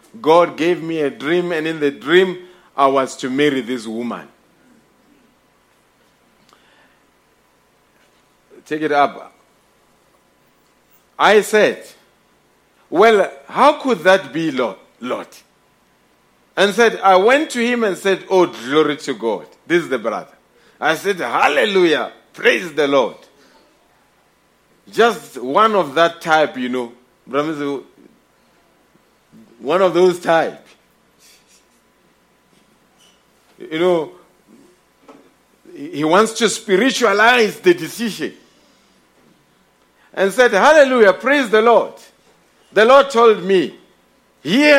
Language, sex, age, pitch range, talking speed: English, male, 50-69, 155-230 Hz, 105 wpm